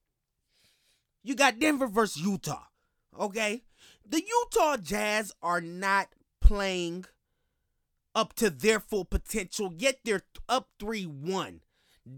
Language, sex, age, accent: English, male, 30-49, American